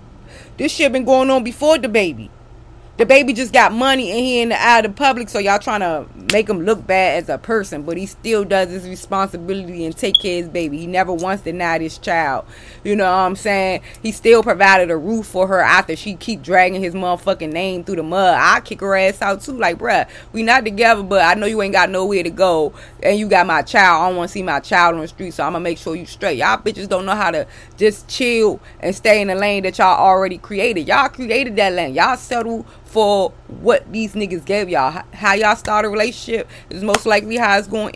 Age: 20-39